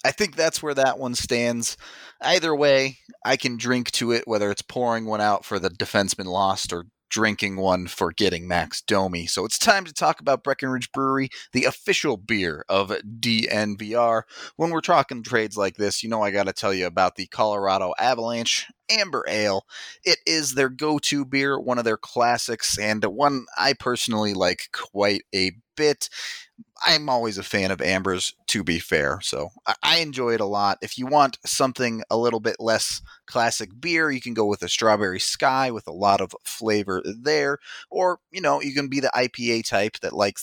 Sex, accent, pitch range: male, American, 105-135 Hz